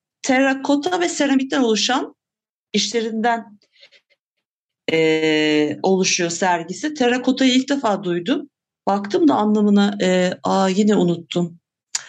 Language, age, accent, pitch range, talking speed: Turkish, 60-79, native, 175-245 Hz, 90 wpm